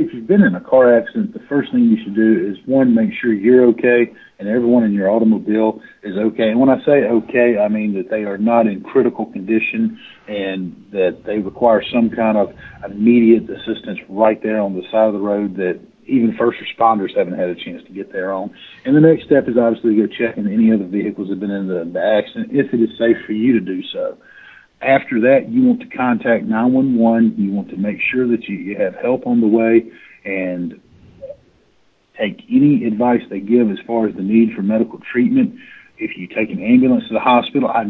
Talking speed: 220 wpm